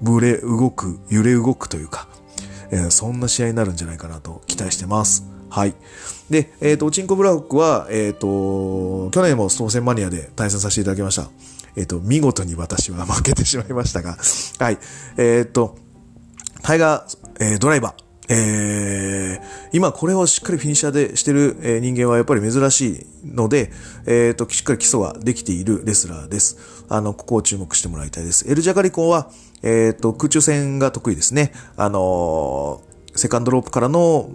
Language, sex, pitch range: Japanese, male, 95-135 Hz